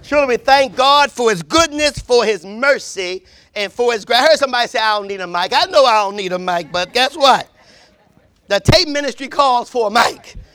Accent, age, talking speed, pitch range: American, 40-59, 230 wpm, 255-340 Hz